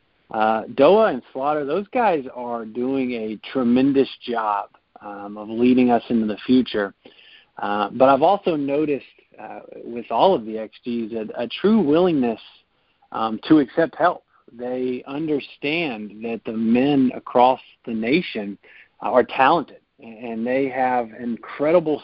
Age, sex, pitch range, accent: 50-69, male, 115-140 Hz, American